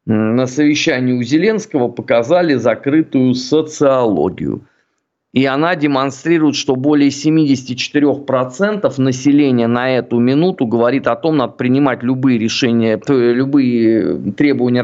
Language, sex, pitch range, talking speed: Russian, male, 130-165 Hz, 110 wpm